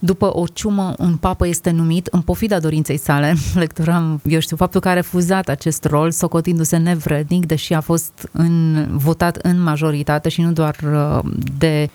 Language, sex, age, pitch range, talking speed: Romanian, female, 30-49, 155-175 Hz, 160 wpm